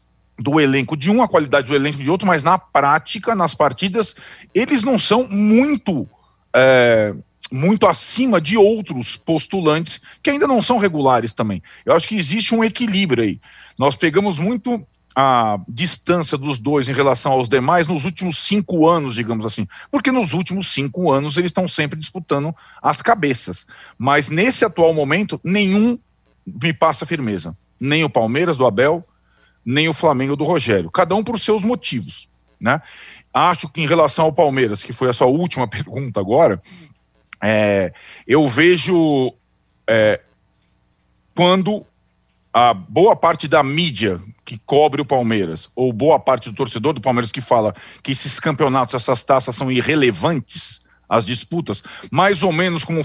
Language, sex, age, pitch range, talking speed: Portuguese, male, 40-59, 130-185 Hz, 155 wpm